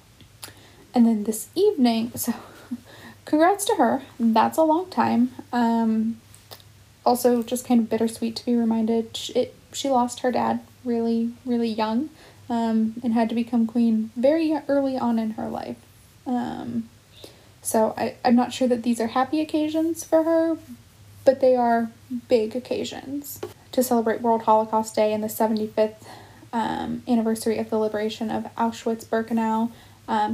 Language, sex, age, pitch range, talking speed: English, female, 10-29, 215-245 Hz, 145 wpm